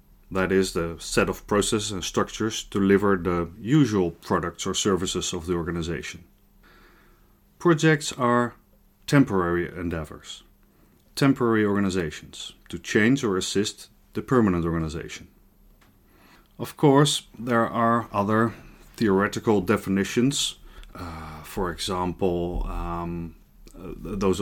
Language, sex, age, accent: English, male, 30-49, Dutch